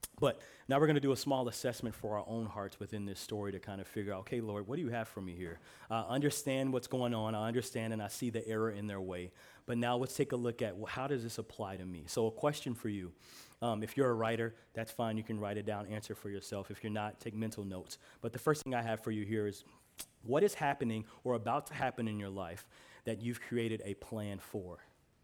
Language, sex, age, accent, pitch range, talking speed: English, male, 30-49, American, 105-125 Hz, 260 wpm